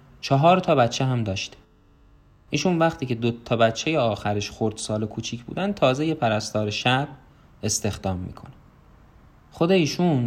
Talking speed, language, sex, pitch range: 140 wpm, Persian, male, 115-160 Hz